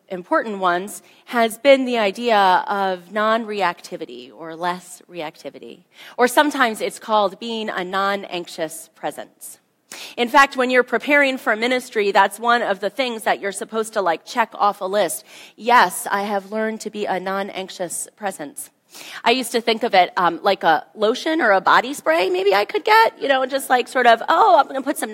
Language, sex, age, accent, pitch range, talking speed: English, female, 30-49, American, 195-260 Hz, 190 wpm